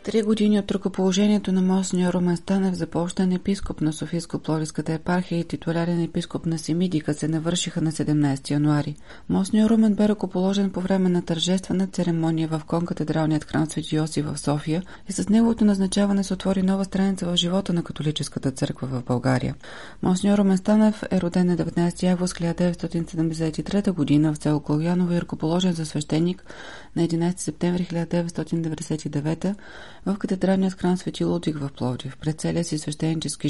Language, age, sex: Bulgarian, 30-49, female